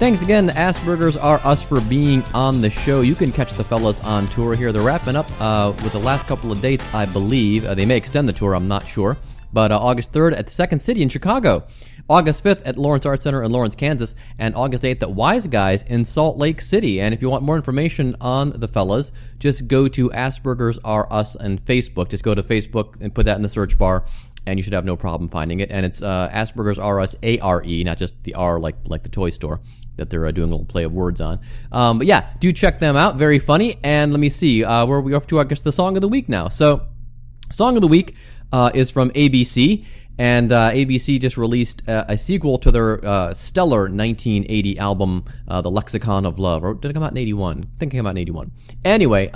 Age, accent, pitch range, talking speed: 30-49, American, 100-135 Hz, 240 wpm